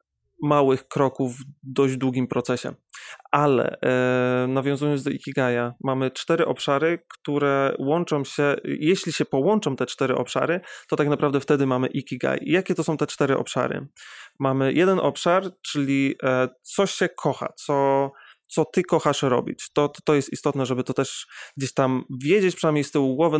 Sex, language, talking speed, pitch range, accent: male, Polish, 155 wpm, 130-155 Hz, native